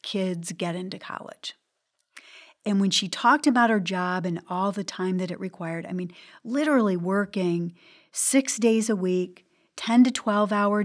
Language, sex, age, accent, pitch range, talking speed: English, female, 40-59, American, 180-230 Hz, 165 wpm